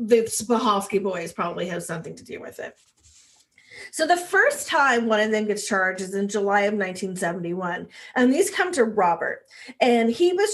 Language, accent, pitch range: English, American, 210-295 Hz